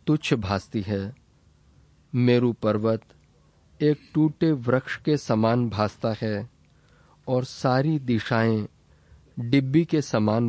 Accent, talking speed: native, 105 wpm